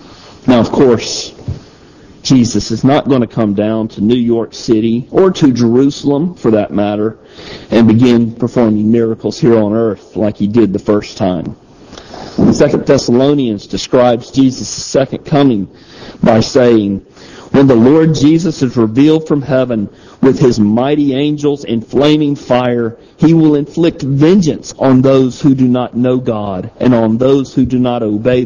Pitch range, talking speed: 110-135 Hz, 155 wpm